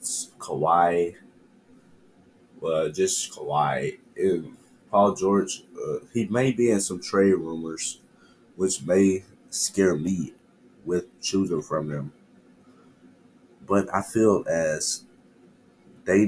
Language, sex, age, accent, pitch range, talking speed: English, male, 30-49, American, 85-110 Hz, 100 wpm